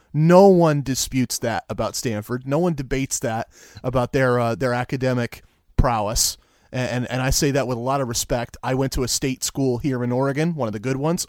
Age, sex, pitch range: 30-49, male, 125-155 Hz